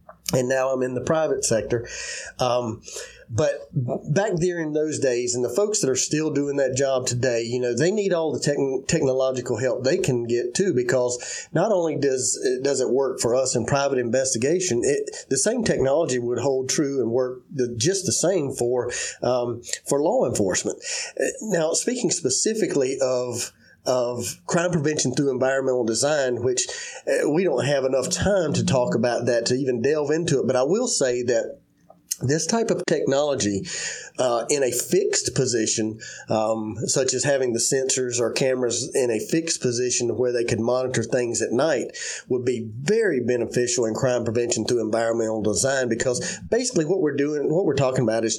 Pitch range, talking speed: 120-160 Hz, 180 wpm